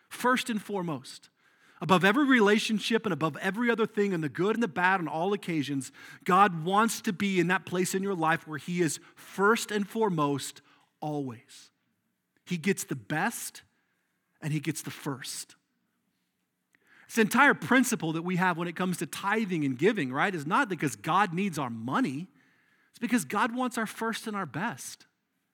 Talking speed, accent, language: 180 wpm, American, English